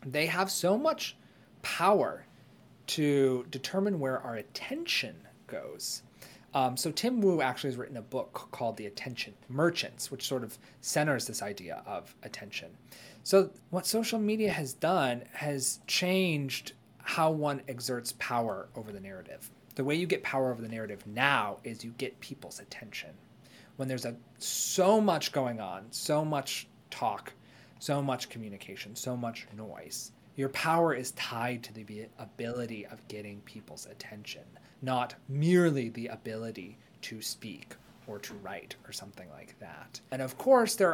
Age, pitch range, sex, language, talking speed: 30-49, 120-180 Hz, male, English, 150 wpm